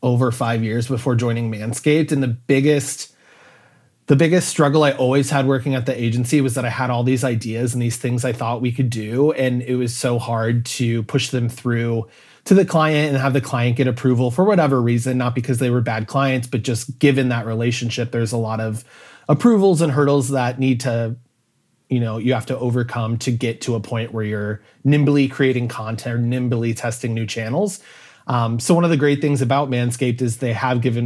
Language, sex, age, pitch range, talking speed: English, male, 30-49, 120-140 Hz, 215 wpm